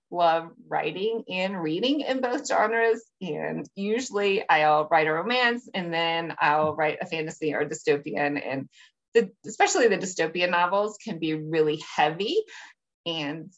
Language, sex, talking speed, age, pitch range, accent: English, female, 135 wpm, 20-39, 160-225 Hz, American